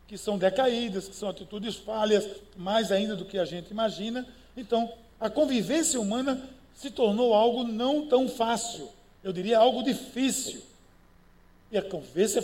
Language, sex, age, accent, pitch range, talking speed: Portuguese, male, 60-79, Brazilian, 205-240 Hz, 150 wpm